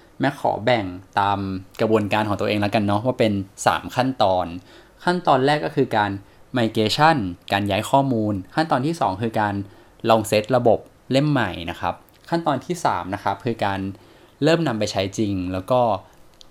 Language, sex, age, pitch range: Thai, male, 20-39, 100-125 Hz